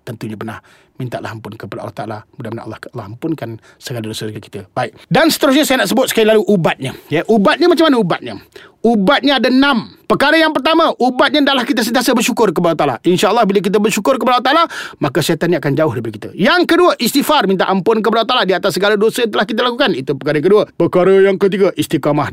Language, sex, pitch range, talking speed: Malay, male, 160-270 Hz, 215 wpm